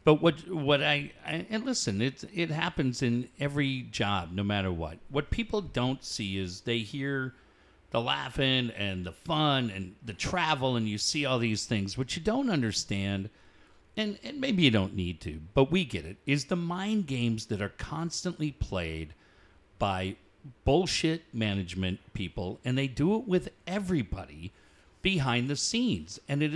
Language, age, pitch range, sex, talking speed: English, 50-69, 110-170 Hz, male, 170 wpm